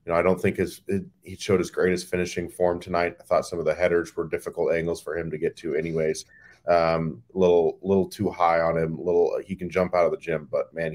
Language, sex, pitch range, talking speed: English, male, 80-110 Hz, 260 wpm